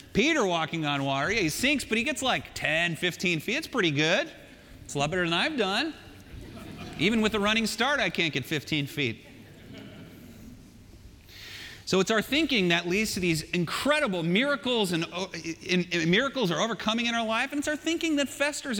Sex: male